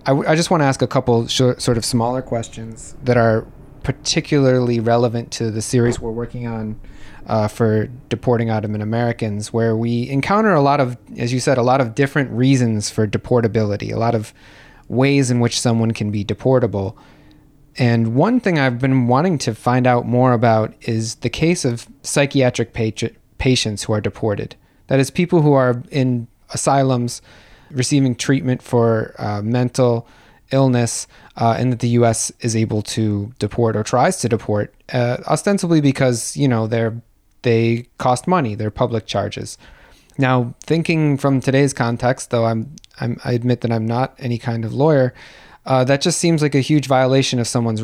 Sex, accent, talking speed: male, American, 170 wpm